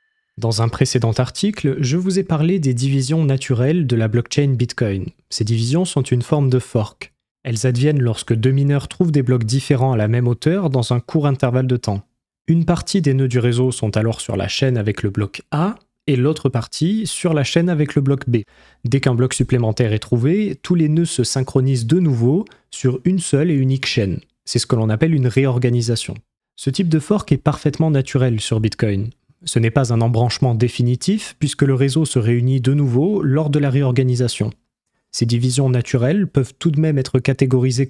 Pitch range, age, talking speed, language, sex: 120-150 Hz, 20-39, 200 wpm, French, male